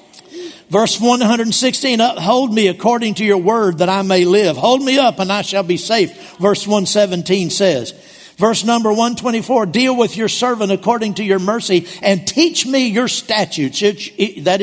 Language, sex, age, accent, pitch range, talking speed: English, male, 50-69, American, 195-235 Hz, 165 wpm